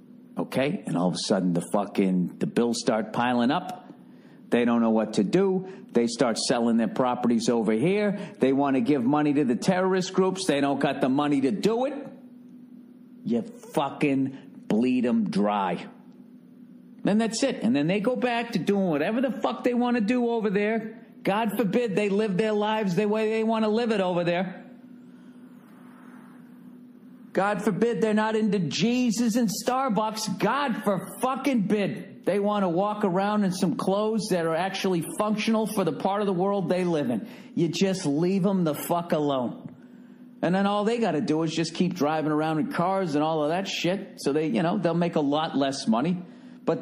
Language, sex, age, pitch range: English, male, 50-69, 165-240 Hz